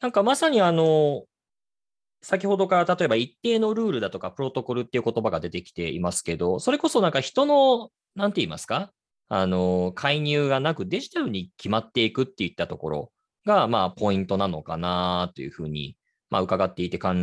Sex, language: male, Japanese